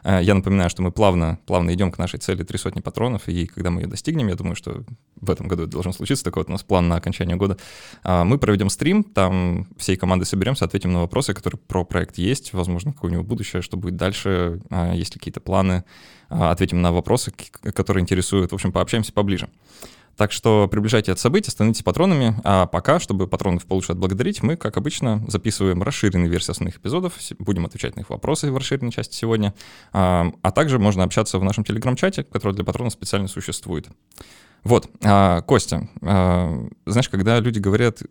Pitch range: 90-110 Hz